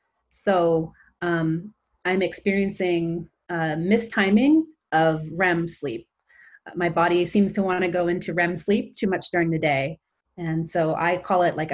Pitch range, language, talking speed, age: 170-200 Hz, German, 150 wpm, 30-49